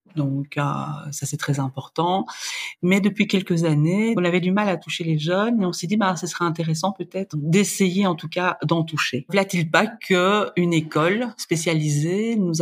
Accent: French